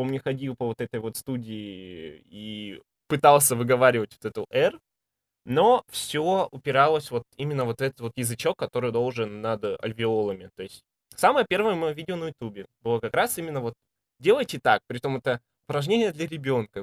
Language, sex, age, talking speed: Russian, male, 20-39, 170 wpm